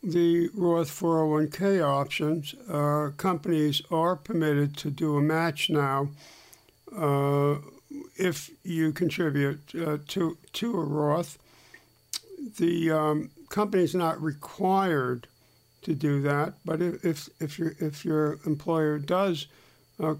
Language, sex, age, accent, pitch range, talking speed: English, male, 60-79, American, 145-175 Hz, 120 wpm